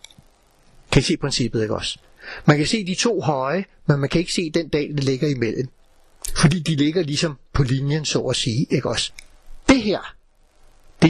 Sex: male